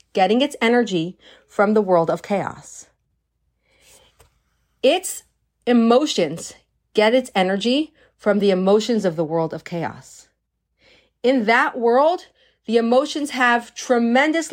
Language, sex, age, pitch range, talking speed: English, female, 40-59, 195-265 Hz, 115 wpm